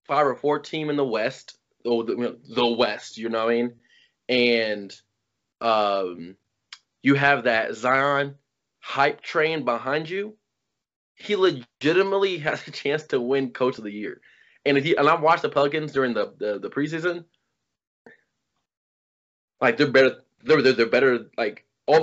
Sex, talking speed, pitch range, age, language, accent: male, 165 wpm, 115-155 Hz, 20-39, English, American